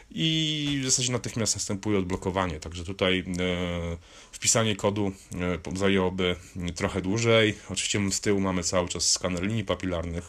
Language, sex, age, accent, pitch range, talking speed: Polish, male, 30-49, native, 95-110 Hz, 135 wpm